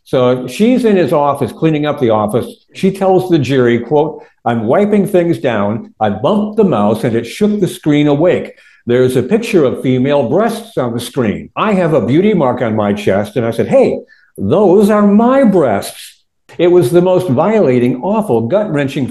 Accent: American